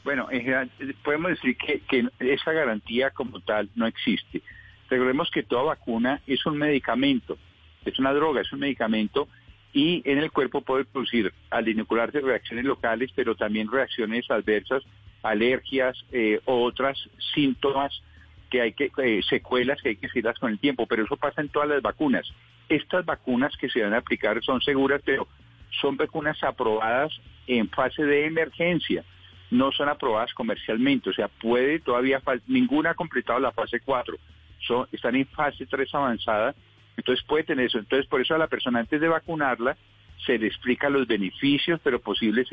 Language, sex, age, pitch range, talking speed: Spanish, male, 50-69, 115-150 Hz, 165 wpm